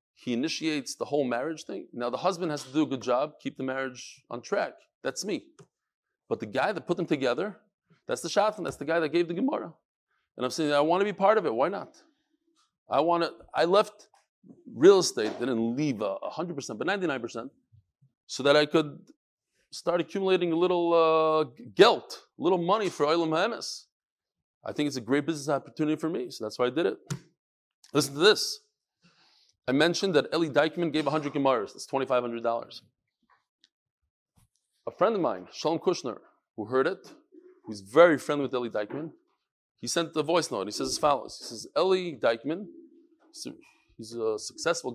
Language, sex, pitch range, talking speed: English, male, 135-195 Hz, 185 wpm